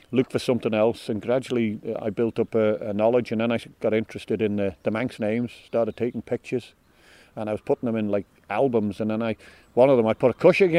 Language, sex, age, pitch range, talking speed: English, male, 40-59, 110-130 Hz, 240 wpm